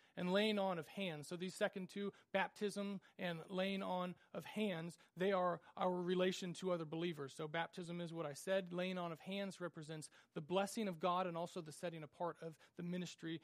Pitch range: 160-185 Hz